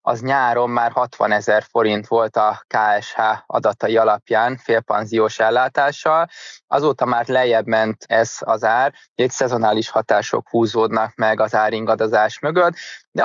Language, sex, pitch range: Hungarian, male, 110-135 Hz